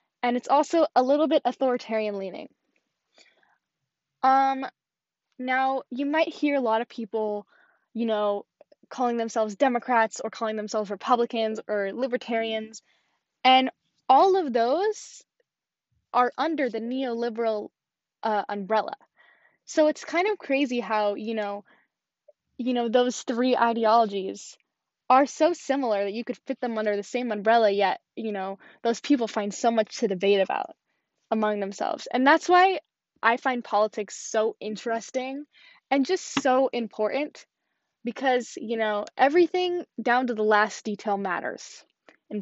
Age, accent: 10-29, American